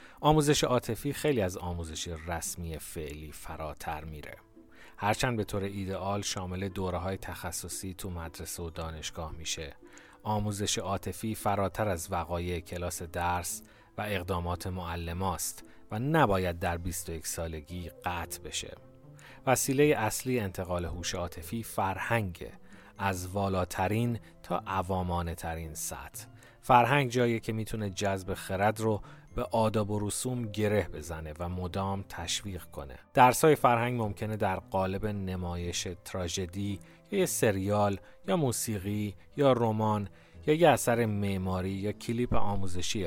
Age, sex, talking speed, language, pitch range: 30-49, male, 120 wpm, Persian, 90-115 Hz